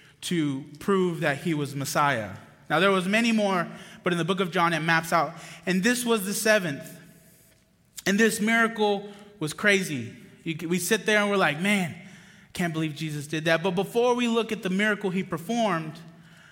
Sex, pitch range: male, 150-195 Hz